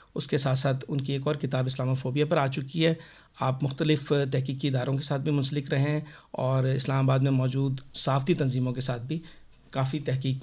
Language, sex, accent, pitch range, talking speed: Hindi, male, native, 130-155 Hz, 190 wpm